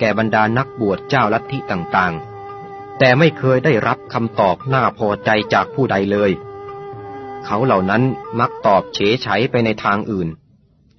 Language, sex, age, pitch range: Thai, male, 30-49, 100-130 Hz